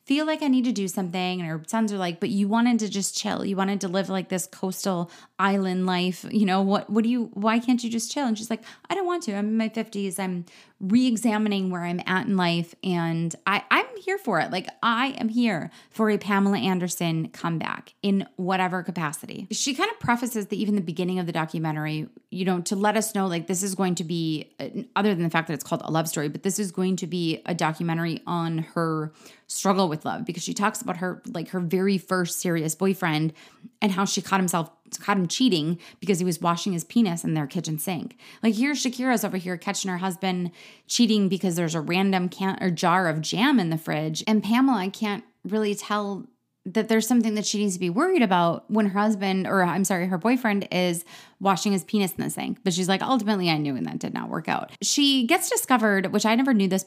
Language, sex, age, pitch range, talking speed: English, female, 30-49, 180-220 Hz, 235 wpm